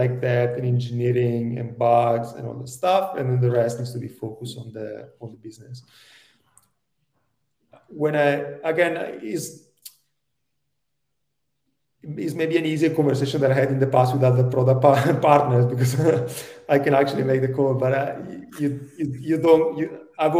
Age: 30-49